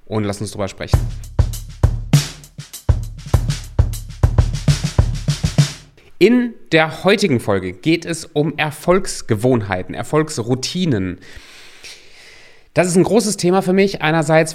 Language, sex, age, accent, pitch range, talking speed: German, male, 30-49, German, 115-145 Hz, 90 wpm